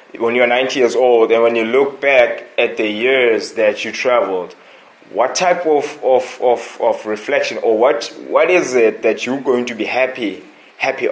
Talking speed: 190 wpm